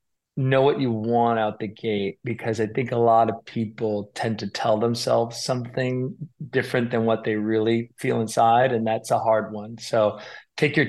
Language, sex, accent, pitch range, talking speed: English, male, American, 110-125 Hz, 185 wpm